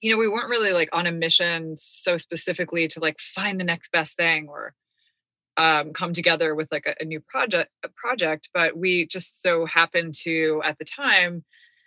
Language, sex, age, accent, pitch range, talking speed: English, female, 20-39, American, 155-180 Hz, 195 wpm